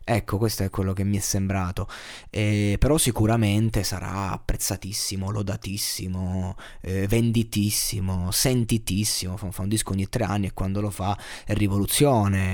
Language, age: Italian, 20-39